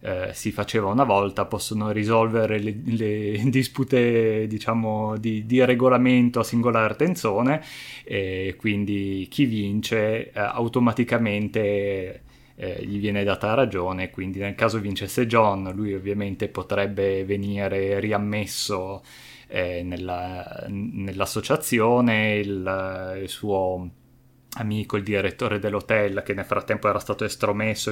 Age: 20-39